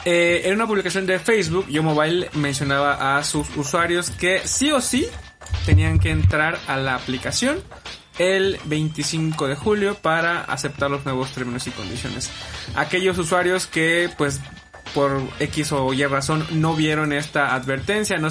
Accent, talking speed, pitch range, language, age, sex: Mexican, 150 wpm, 135-175 Hz, Spanish, 20-39, male